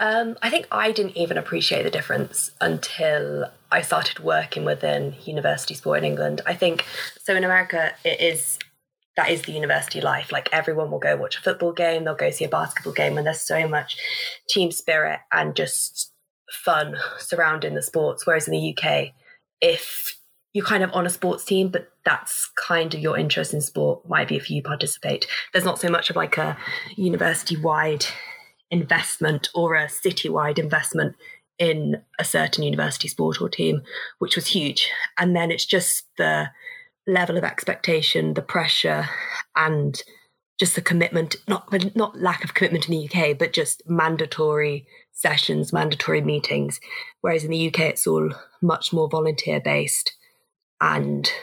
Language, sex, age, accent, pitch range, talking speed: English, female, 20-39, British, 150-180 Hz, 165 wpm